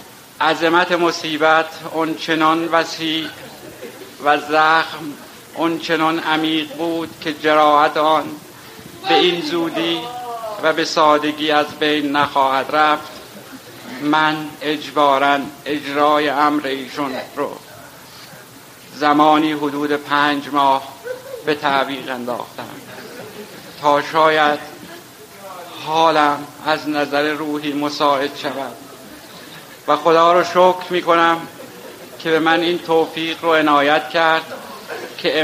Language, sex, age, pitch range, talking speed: Persian, male, 60-79, 145-160 Hz, 95 wpm